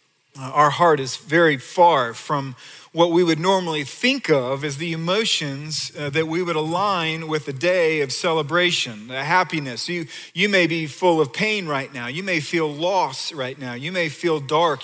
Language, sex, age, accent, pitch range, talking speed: English, male, 40-59, American, 145-185 Hz, 180 wpm